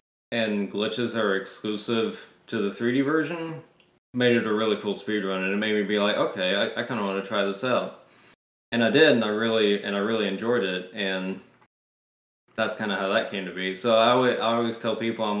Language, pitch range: English, 100-125 Hz